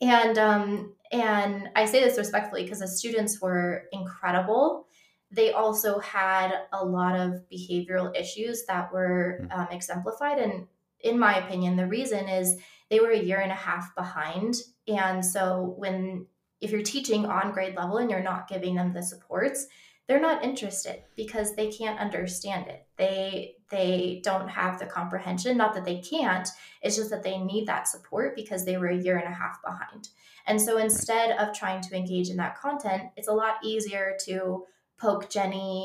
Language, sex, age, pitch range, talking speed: English, female, 20-39, 185-215 Hz, 175 wpm